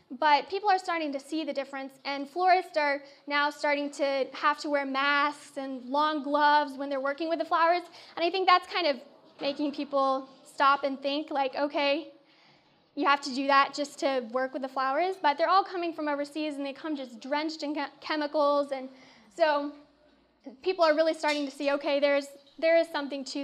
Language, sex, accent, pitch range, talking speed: English, female, American, 280-320 Hz, 200 wpm